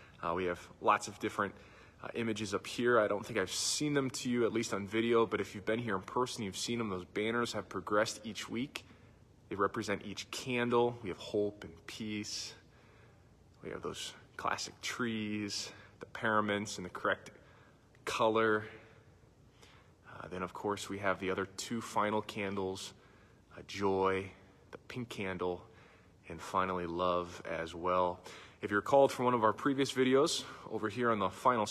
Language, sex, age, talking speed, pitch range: English, male, 20-39, 175 wpm, 95-115 Hz